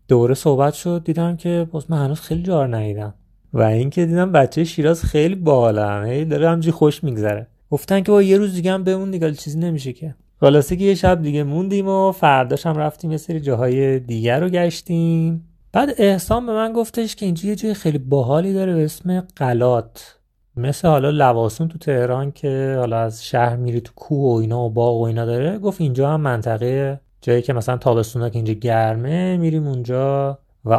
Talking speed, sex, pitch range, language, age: 185 wpm, male, 125-175 Hz, Persian, 30-49